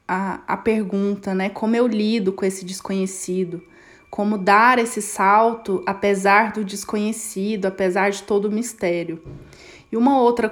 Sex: female